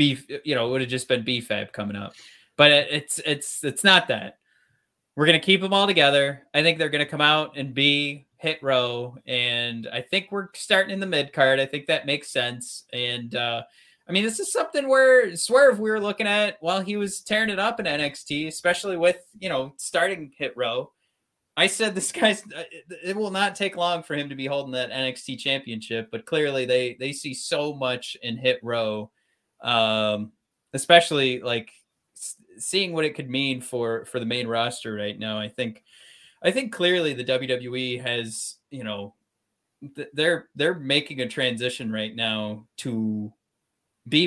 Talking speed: 185 wpm